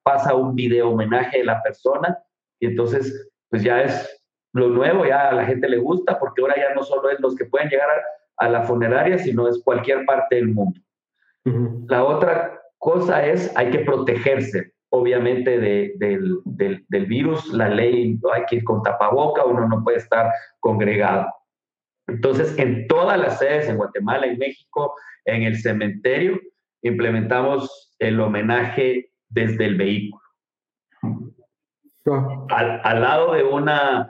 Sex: male